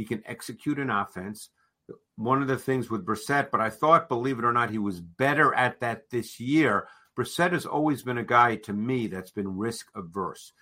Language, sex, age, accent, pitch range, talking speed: English, male, 50-69, American, 105-125 Hz, 205 wpm